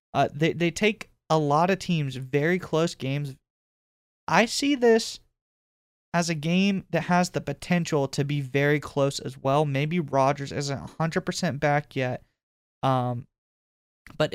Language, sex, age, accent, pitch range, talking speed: English, male, 20-39, American, 140-175 Hz, 145 wpm